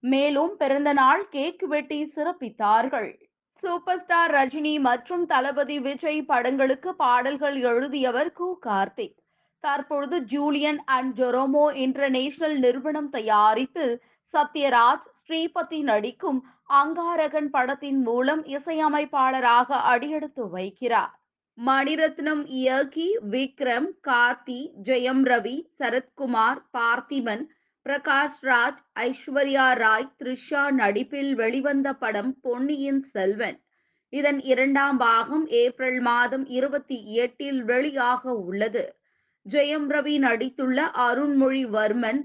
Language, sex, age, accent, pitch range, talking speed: Tamil, female, 20-39, native, 245-295 Hz, 90 wpm